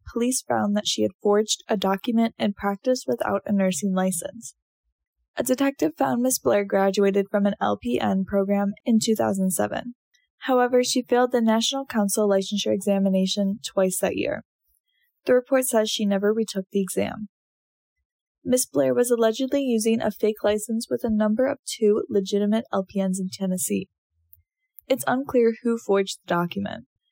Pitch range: 200-245 Hz